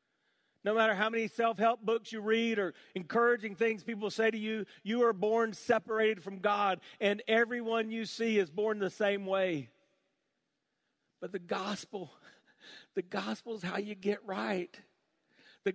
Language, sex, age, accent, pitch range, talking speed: English, male, 40-59, American, 175-225 Hz, 155 wpm